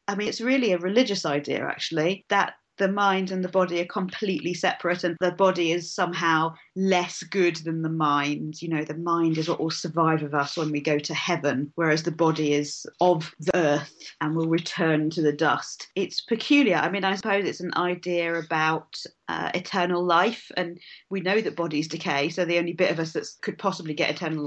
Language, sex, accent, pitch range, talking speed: English, female, British, 165-225 Hz, 210 wpm